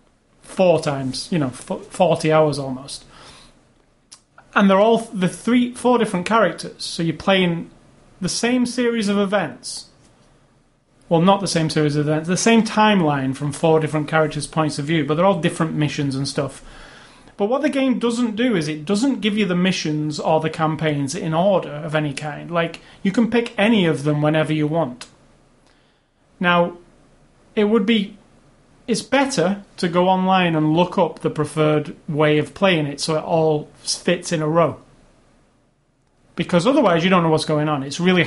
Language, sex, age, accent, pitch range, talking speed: English, male, 30-49, British, 155-195 Hz, 175 wpm